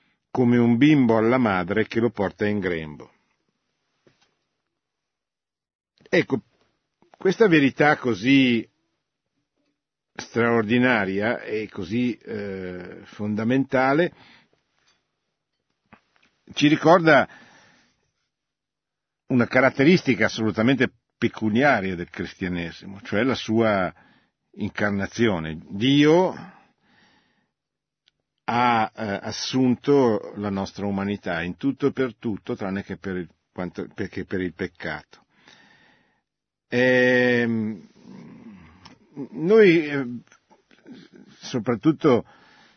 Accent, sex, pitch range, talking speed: native, male, 100-130 Hz, 70 wpm